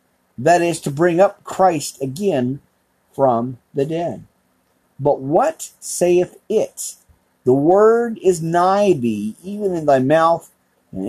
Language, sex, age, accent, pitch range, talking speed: English, male, 50-69, American, 115-170 Hz, 130 wpm